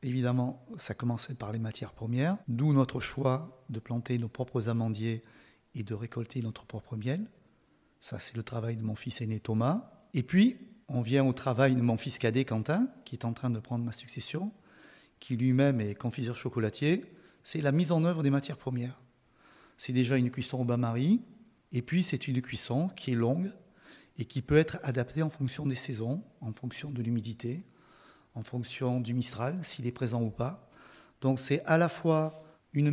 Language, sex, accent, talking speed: French, male, French, 190 wpm